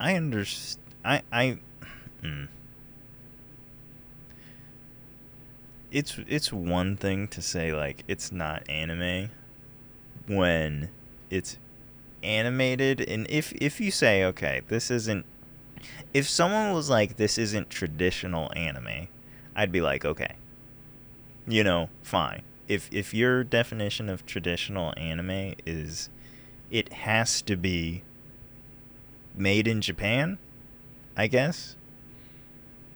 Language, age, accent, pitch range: English, 20-39, American, 95-130 Hz